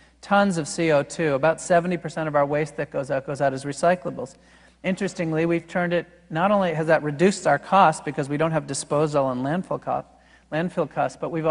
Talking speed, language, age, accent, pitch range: 190 wpm, English, 50-69, American, 140-165 Hz